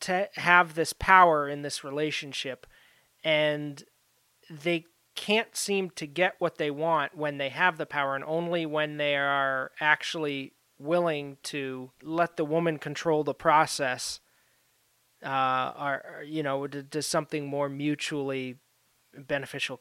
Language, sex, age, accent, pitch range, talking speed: English, male, 30-49, American, 140-165 Hz, 135 wpm